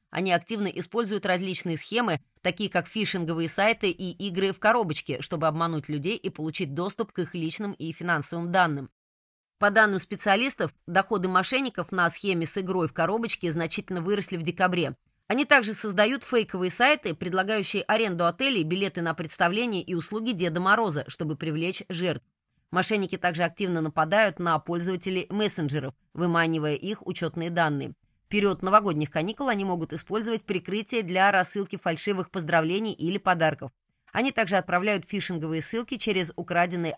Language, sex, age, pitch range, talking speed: Russian, female, 20-39, 165-205 Hz, 145 wpm